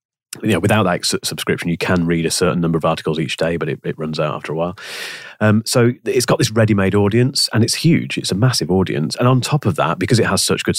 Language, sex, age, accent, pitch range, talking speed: English, male, 30-49, British, 80-110 Hz, 265 wpm